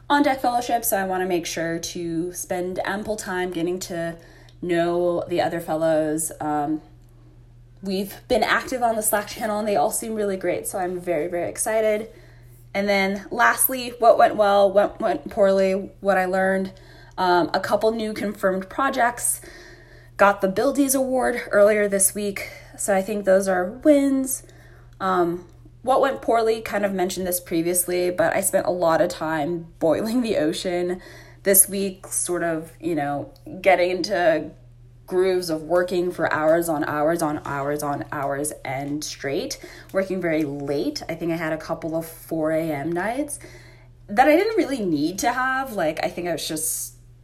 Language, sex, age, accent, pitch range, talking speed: English, female, 20-39, American, 160-210 Hz, 170 wpm